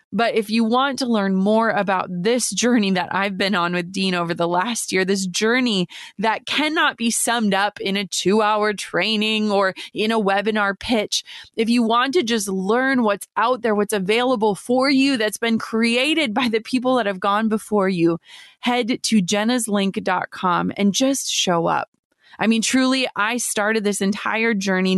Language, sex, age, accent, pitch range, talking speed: English, female, 20-39, American, 195-235 Hz, 180 wpm